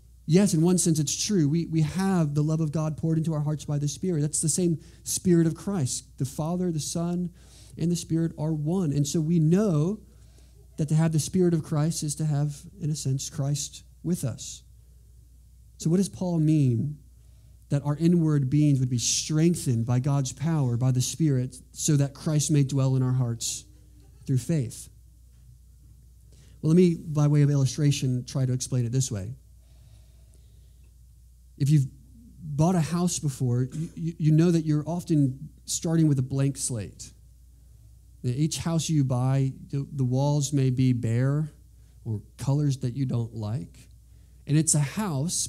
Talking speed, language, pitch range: 175 wpm, English, 125-155 Hz